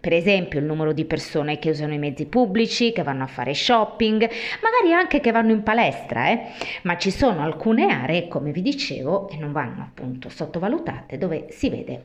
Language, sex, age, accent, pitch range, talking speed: Italian, female, 30-49, native, 160-245 Hz, 195 wpm